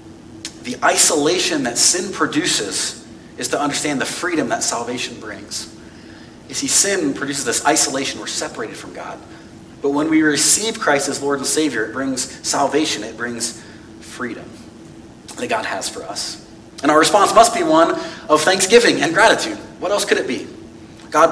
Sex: male